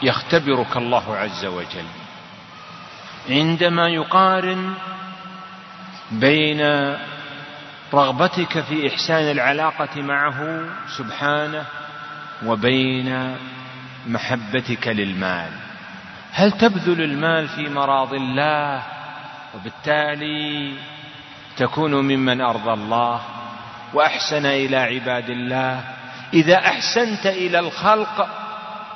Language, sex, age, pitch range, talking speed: Malay, male, 40-59, 125-160 Hz, 75 wpm